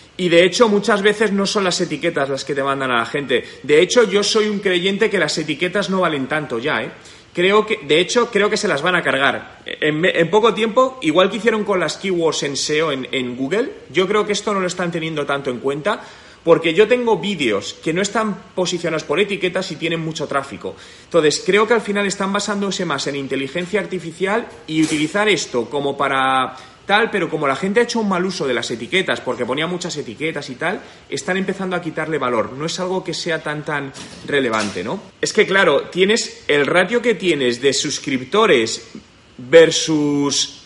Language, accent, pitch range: Spanish, Spanish, 145-205 Hz